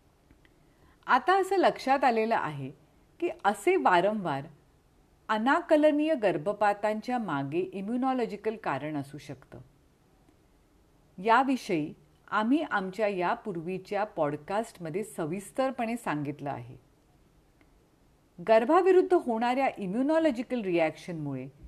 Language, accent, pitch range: Marathi, native, 170-275 Hz